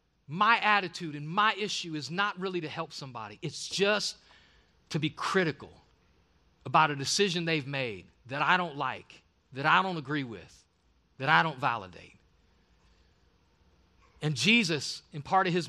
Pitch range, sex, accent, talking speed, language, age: 110-180 Hz, male, American, 155 wpm, English, 40-59